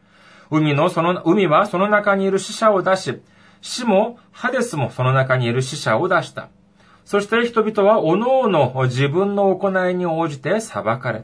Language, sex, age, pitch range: Japanese, male, 40-59, 140-215 Hz